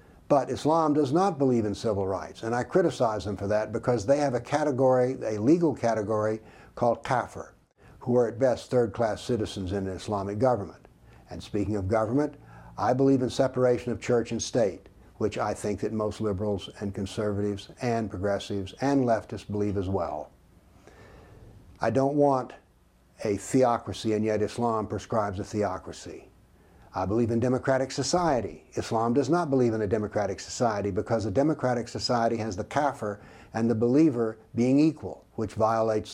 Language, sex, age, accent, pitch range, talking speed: English, male, 60-79, American, 105-130 Hz, 165 wpm